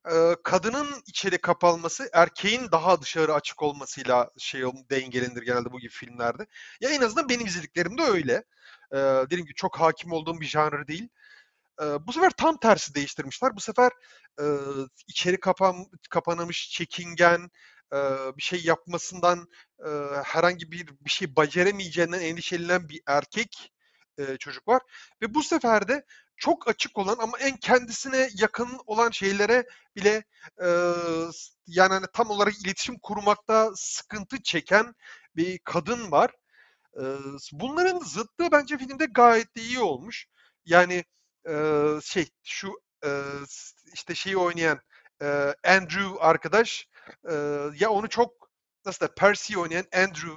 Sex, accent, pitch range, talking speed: male, native, 155-225 Hz, 135 wpm